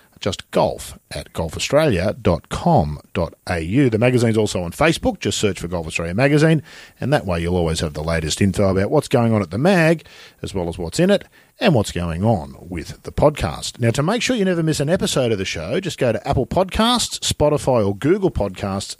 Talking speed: 205 wpm